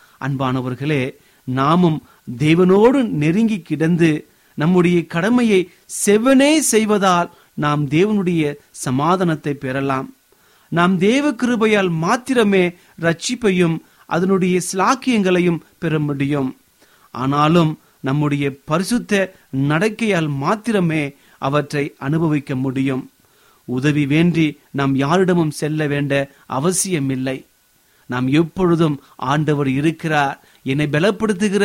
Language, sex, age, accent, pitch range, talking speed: Tamil, male, 30-49, native, 140-185 Hz, 80 wpm